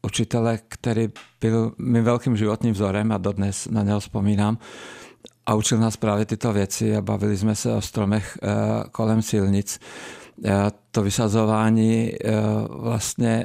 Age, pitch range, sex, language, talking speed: 50-69, 105-115 Hz, male, Czech, 145 wpm